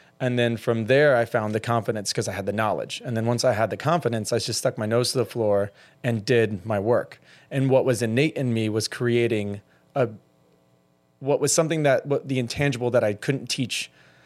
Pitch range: 110-130 Hz